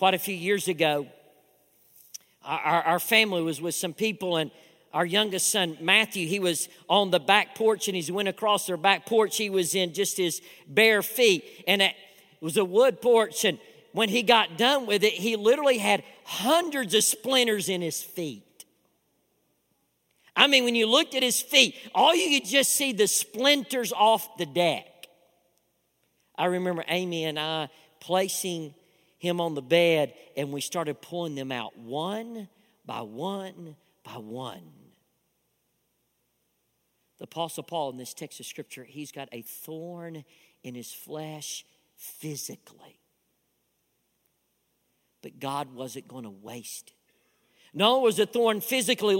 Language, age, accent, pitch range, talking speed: English, 50-69, American, 160-220 Hz, 155 wpm